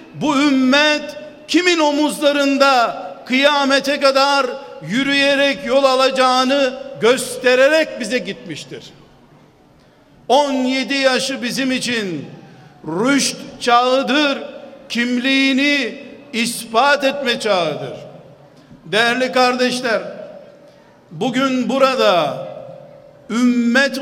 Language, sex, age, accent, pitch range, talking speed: Turkish, male, 50-69, native, 250-280 Hz, 65 wpm